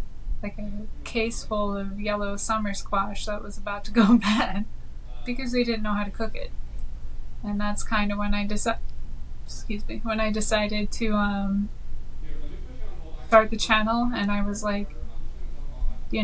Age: 20-39